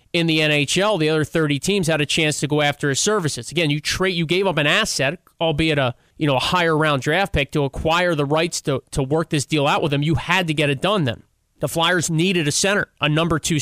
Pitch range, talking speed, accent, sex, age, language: 145-175 Hz, 260 wpm, American, male, 30-49, English